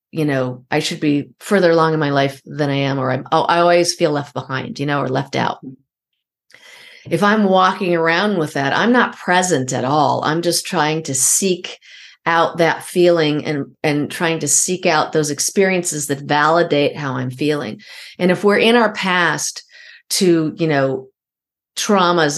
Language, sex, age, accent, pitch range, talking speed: English, female, 40-59, American, 150-180 Hz, 180 wpm